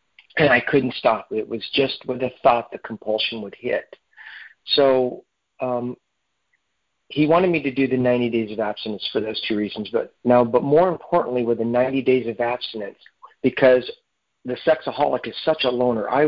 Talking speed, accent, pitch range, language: 180 wpm, American, 120-145 Hz, English